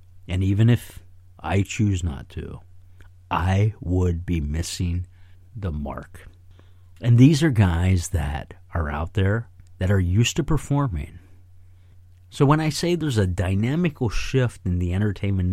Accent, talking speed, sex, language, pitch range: American, 145 wpm, male, English, 90-125 Hz